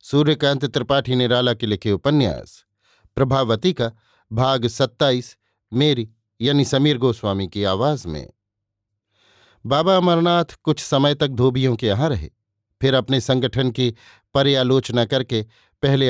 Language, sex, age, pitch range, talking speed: Hindi, male, 50-69, 110-145 Hz, 125 wpm